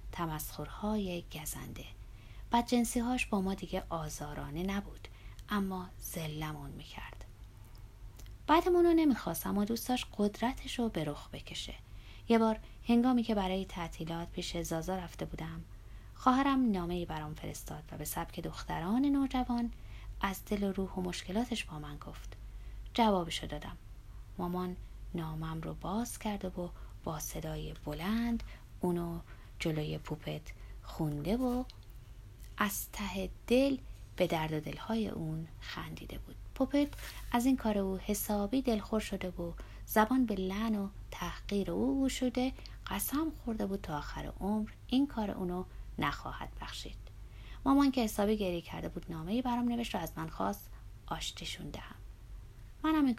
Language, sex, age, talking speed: Persian, female, 30-49, 130 wpm